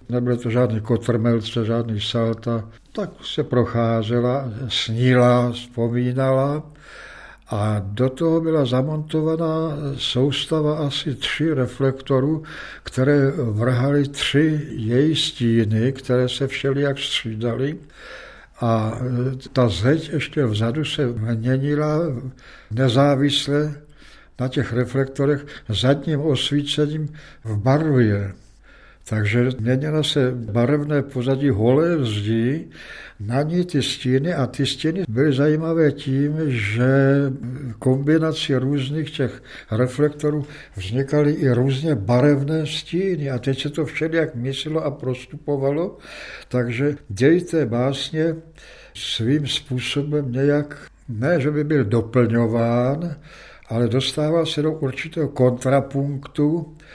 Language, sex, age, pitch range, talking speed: Czech, male, 60-79, 125-150 Hz, 100 wpm